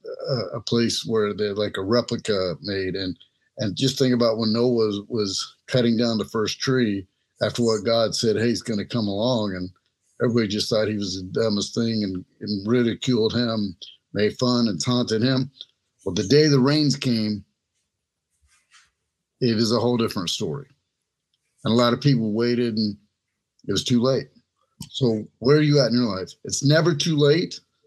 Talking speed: 185 wpm